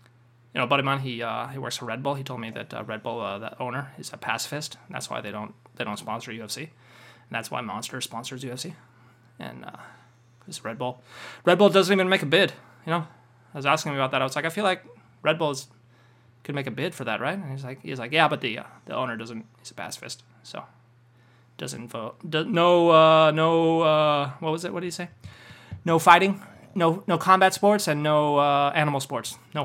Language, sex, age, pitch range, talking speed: English, male, 20-39, 120-165 Hz, 235 wpm